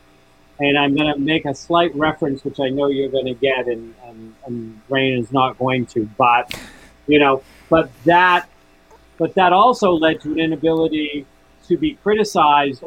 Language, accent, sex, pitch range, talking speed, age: English, American, male, 110-165 Hz, 175 wpm, 40-59